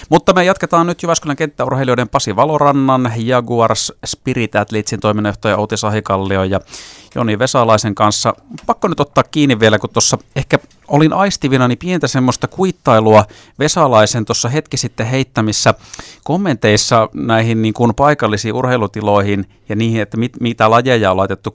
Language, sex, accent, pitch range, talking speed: Finnish, male, native, 105-130 Hz, 135 wpm